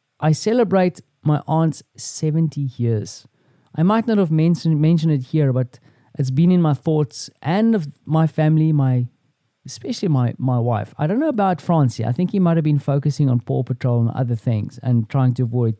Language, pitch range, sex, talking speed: English, 120-155 Hz, male, 200 wpm